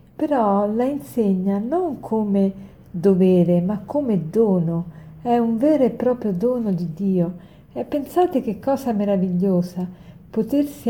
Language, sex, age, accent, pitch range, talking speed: Italian, female, 50-69, native, 190-230 Hz, 125 wpm